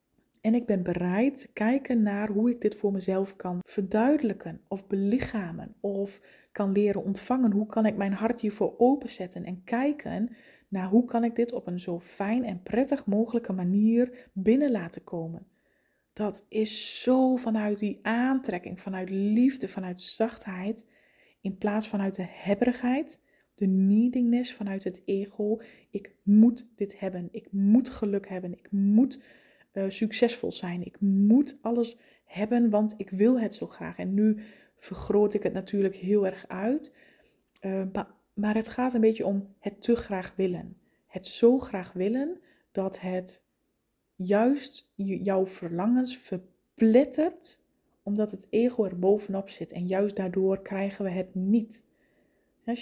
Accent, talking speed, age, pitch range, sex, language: Dutch, 150 wpm, 20-39, 195-235 Hz, female, Dutch